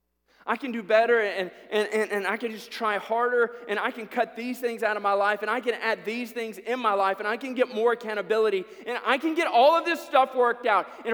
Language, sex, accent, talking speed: English, male, American, 265 wpm